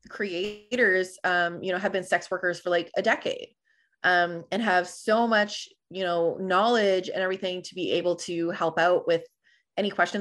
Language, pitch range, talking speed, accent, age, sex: English, 170-200 Hz, 180 wpm, American, 20-39, female